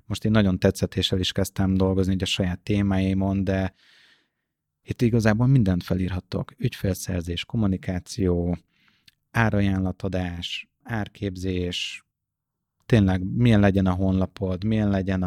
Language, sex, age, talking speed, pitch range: Hungarian, male, 30-49, 105 wpm, 95-105 Hz